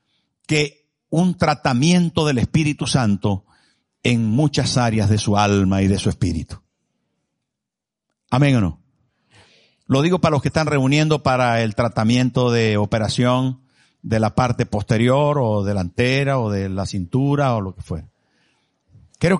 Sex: male